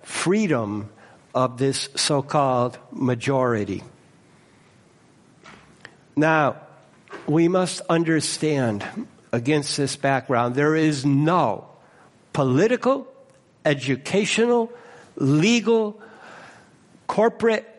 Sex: male